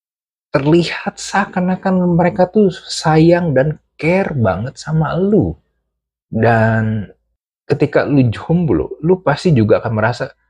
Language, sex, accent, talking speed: Indonesian, male, native, 115 wpm